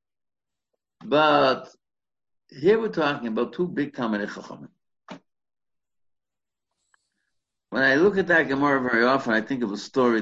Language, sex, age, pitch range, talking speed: English, male, 60-79, 105-135 Hz, 125 wpm